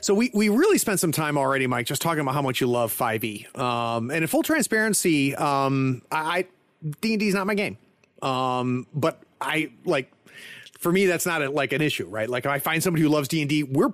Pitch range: 120-180 Hz